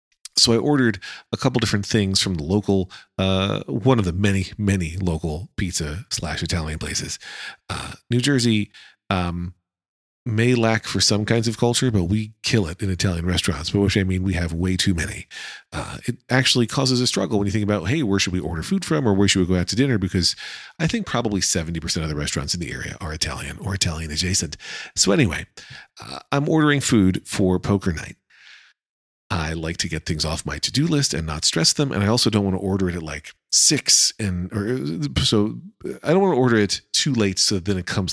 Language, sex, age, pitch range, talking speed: English, male, 40-59, 90-115 Hz, 215 wpm